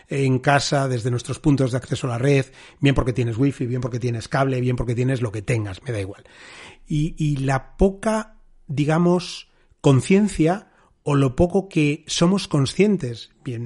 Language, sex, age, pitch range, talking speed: Spanish, male, 30-49, 130-165 Hz, 175 wpm